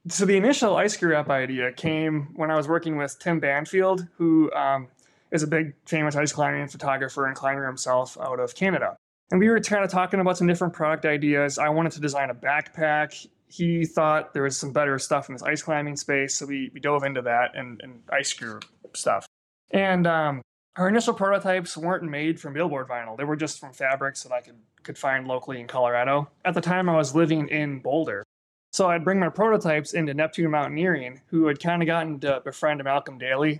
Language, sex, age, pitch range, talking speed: English, male, 20-39, 140-175 Hz, 215 wpm